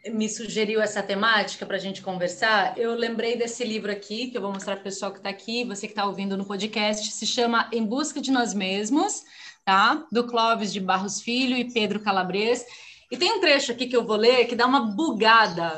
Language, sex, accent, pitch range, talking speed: Portuguese, female, Brazilian, 205-275 Hz, 220 wpm